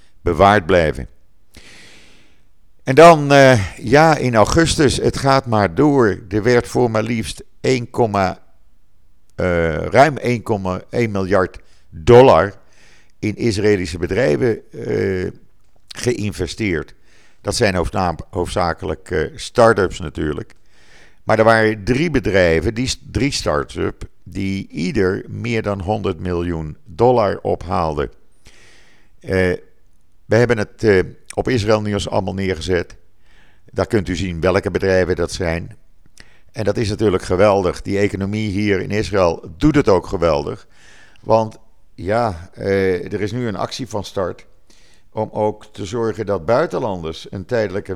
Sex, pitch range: male, 95-115 Hz